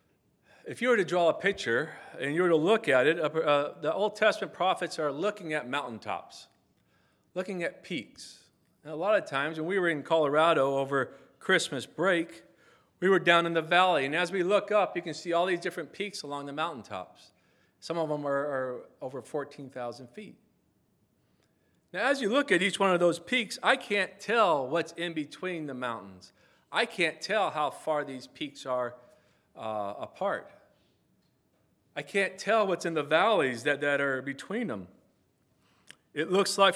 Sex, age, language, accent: male, 40-59, English, American